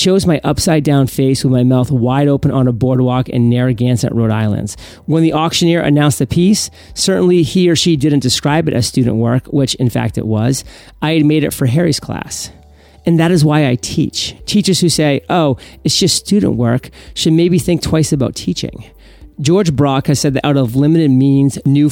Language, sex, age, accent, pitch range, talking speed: English, male, 40-59, American, 125-155 Hz, 205 wpm